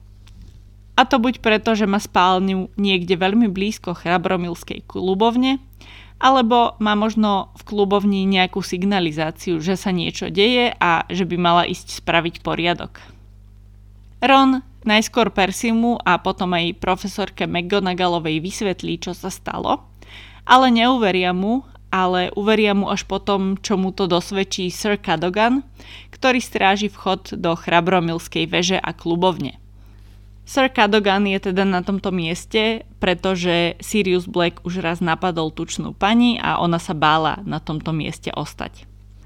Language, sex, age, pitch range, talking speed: Slovak, female, 20-39, 165-205 Hz, 135 wpm